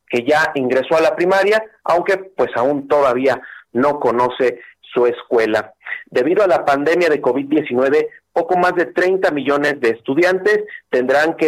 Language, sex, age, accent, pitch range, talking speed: Spanish, male, 40-59, Mexican, 130-175 Hz, 150 wpm